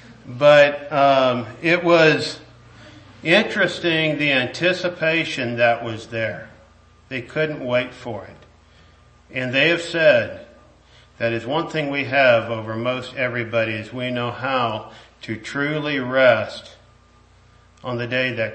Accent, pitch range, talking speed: American, 115-135 Hz, 125 wpm